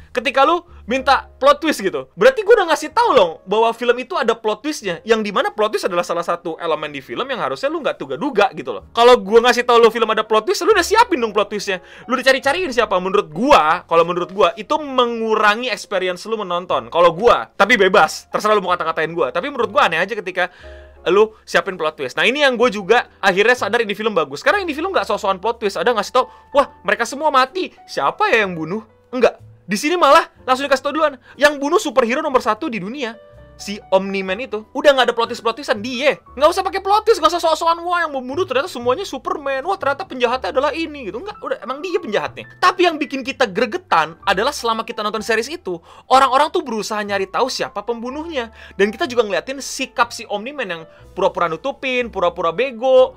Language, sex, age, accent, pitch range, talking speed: Indonesian, male, 20-39, native, 195-290 Hz, 210 wpm